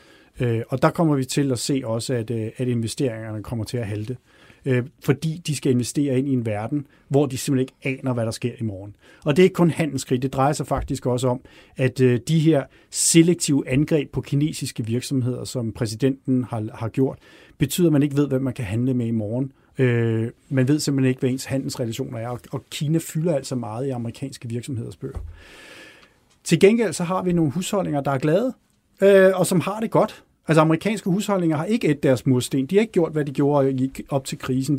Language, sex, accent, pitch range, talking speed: Danish, male, native, 125-160 Hz, 205 wpm